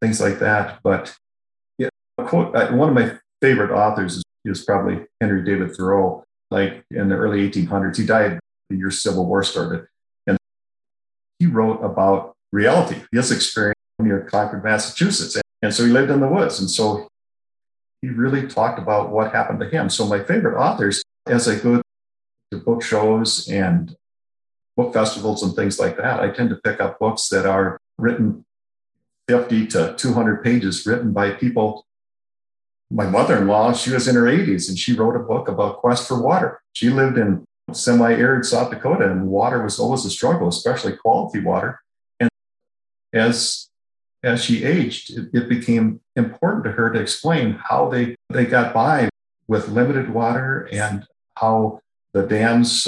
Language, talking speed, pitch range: English, 170 wpm, 100-120 Hz